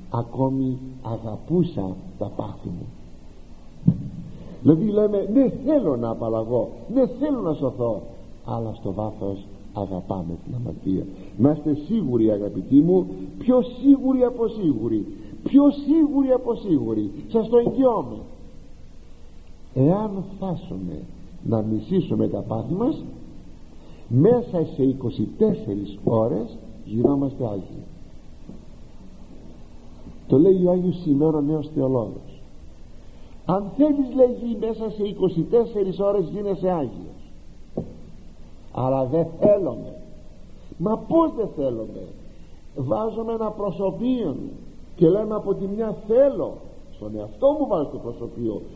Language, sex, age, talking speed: Greek, male, 60-79, 110 wpm